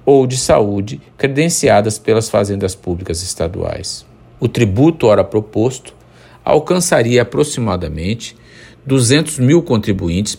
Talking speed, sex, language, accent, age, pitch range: 100 wpm, male, Portuguese, Brazilian, 50-69, 95-120 Hz